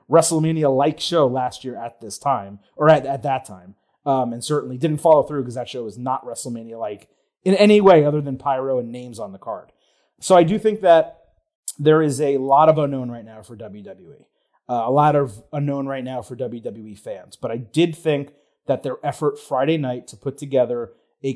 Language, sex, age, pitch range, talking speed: English, male, 30-49, 125-160 Hz, 210 wpm